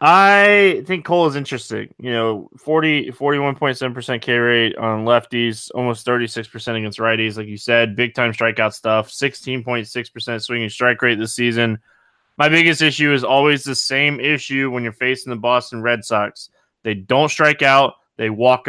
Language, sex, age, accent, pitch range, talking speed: English, male, 20-39, American, 115-140 Hz, 160 wpm